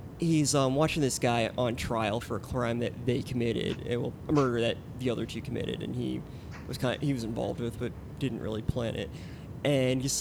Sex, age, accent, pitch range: male, 20-39, American, 115-130 Hz